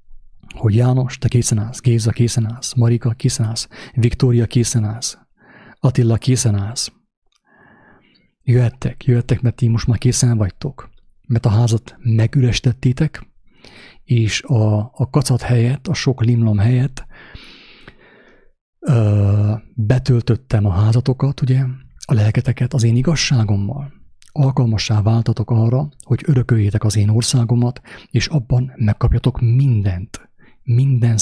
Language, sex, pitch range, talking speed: English, male, 110-125 Hz, 115 wpm